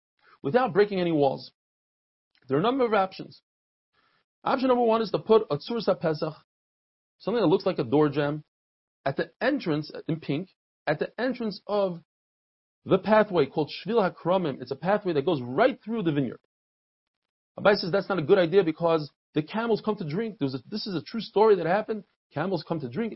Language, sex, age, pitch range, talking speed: English, male, 40-59, 145-210 Hz, 195 wpm